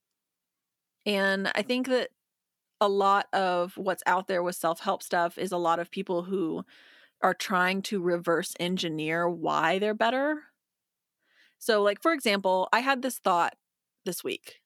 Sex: female